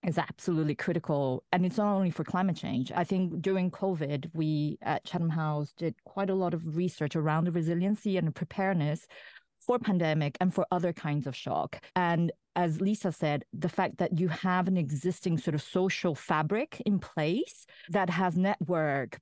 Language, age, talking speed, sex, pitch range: English, 30-49, 180 wpm, female, 155-195 Hz